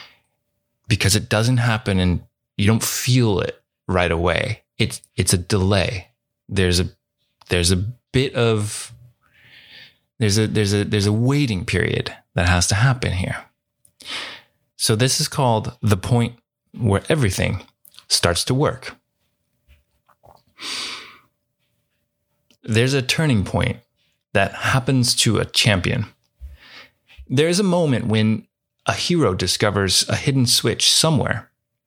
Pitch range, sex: 105-125 Hz, male